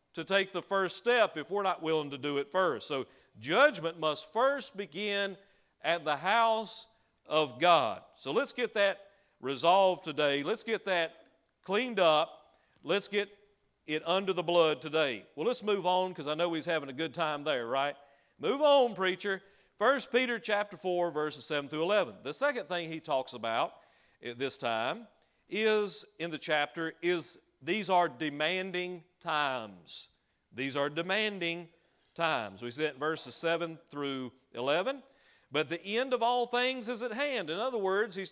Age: 40-59